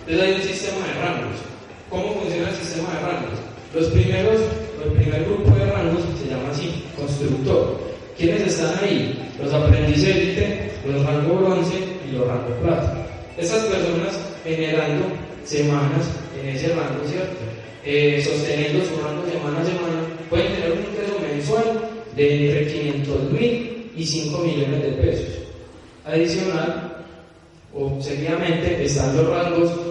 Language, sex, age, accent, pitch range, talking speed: Spanish, male, 20-39, Colombian, 135-170 Hz, 140 wpm